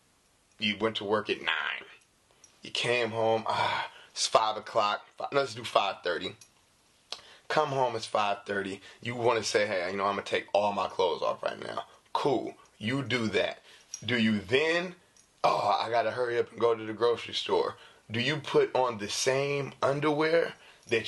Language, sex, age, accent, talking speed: English, male, 20-39, American, 185 wpm